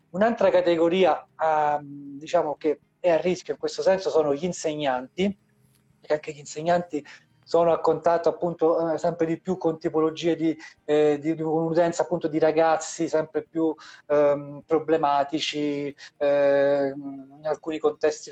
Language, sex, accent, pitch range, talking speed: Italian, male, native, 150-170 Hz, 135 wpm